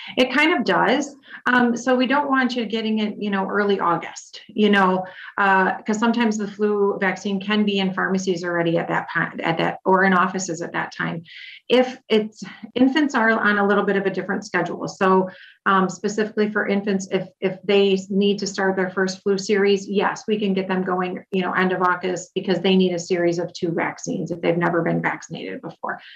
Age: 30-49